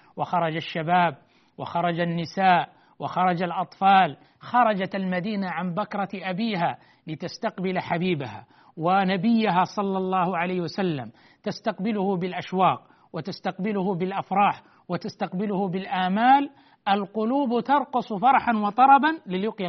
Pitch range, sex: 160-210 Hz, male